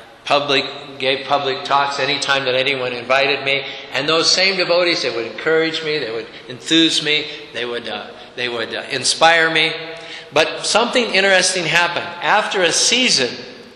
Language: English